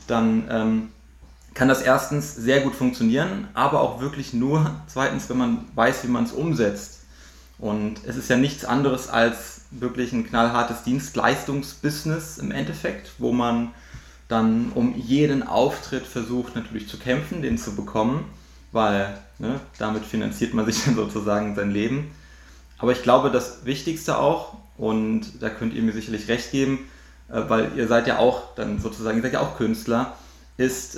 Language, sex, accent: German, male, German